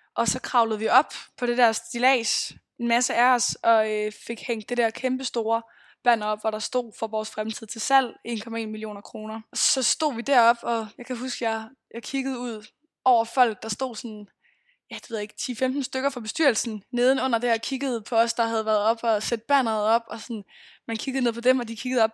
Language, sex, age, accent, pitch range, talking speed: Danish, female, 20-39, native, 220-255 Hz, 235 wpm